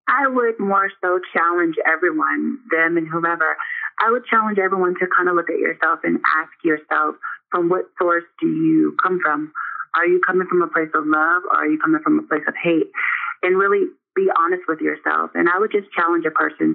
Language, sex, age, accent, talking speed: English, female, 30-49, American, 210 wpm